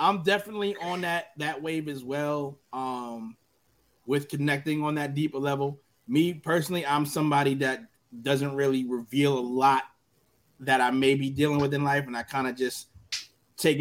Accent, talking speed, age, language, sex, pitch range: American, 170 wpm, 20-39, English, male, 130-155 Hz